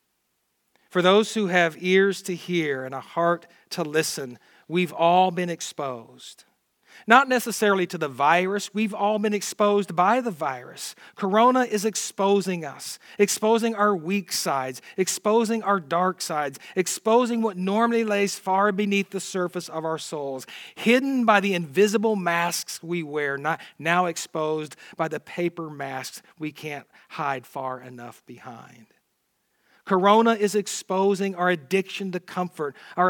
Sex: male